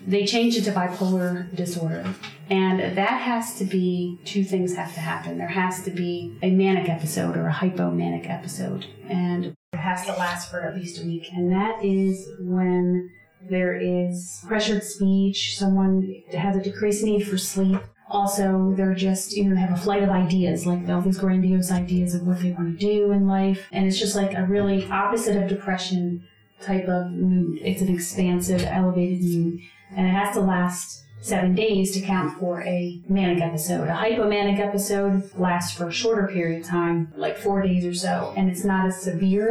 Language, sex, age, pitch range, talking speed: English, female, 30-49, 180-200 Hz, 190 wpm